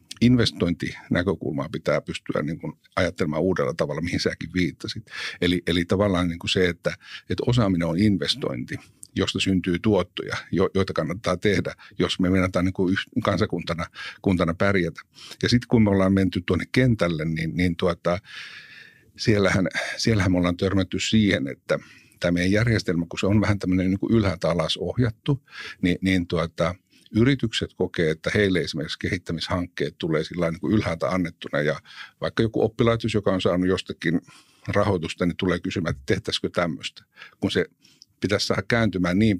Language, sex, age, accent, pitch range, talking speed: Finnish, male, 60-79, native, 90-105 Hz, 150 wpm